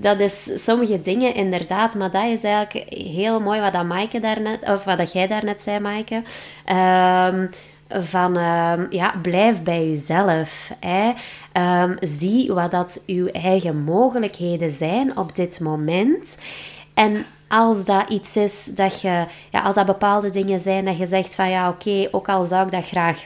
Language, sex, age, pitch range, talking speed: Dutch, female, 20-39, 175-205 Hz, 170 wpm